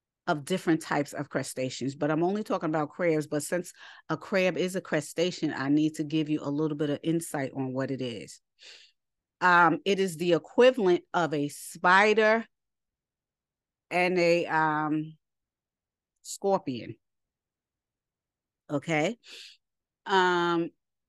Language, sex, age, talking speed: English, female, 30-49, 130 wpm